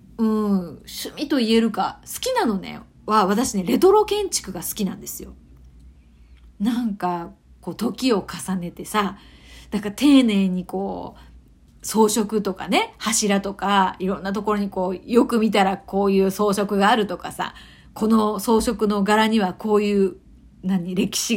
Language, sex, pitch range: Japanese, female, 190-240 Hz